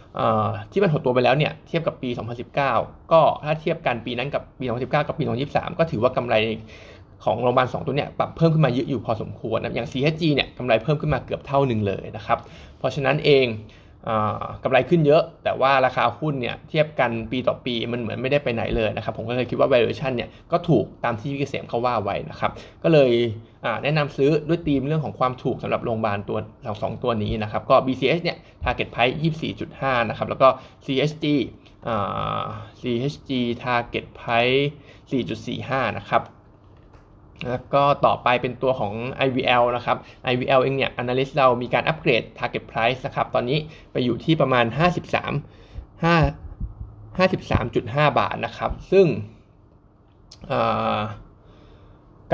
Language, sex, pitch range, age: Thai, male, 110-140 Hz, 20-39